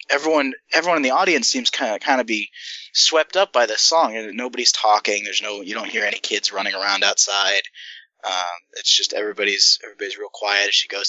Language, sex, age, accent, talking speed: English, male, 20-39, American, 210 wpm